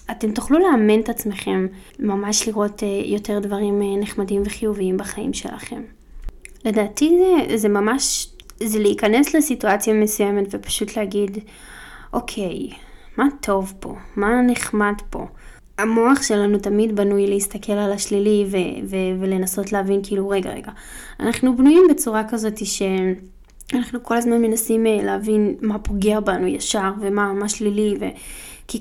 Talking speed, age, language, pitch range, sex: 135 wpm, 20-39, Hebrew, 200-235 Hz, female